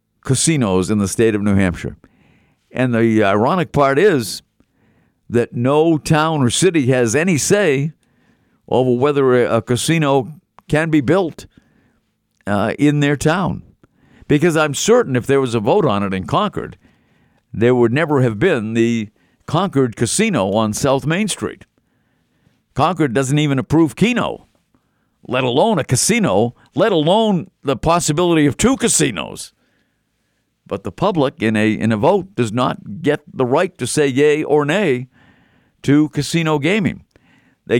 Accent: American